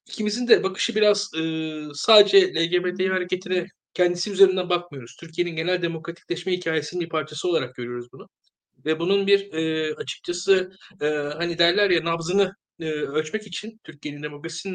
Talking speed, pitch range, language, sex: 140 wpm, 155-195 Hz, Turkish, male